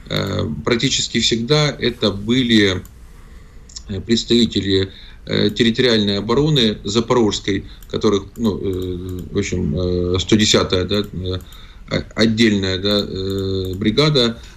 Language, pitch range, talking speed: Russian, 95-115 Hz, 70 wpm